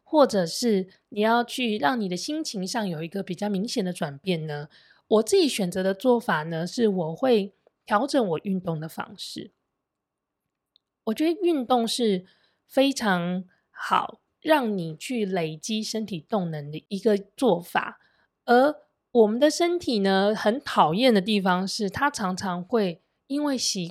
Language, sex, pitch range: Chinese, female, 185-250 Hz